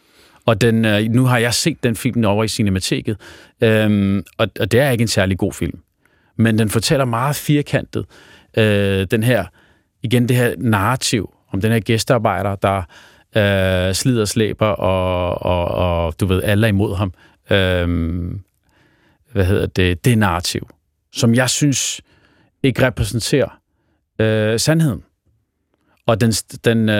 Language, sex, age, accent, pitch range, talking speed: Danish, male, 40-59, native, 95-120 Hz, 145 wpm